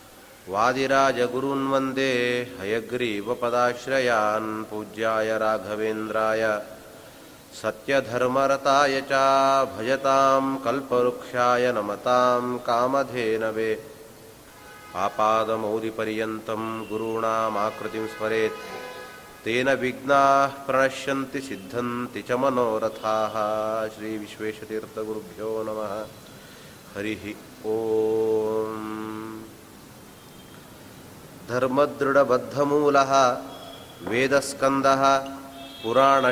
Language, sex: Kannada, male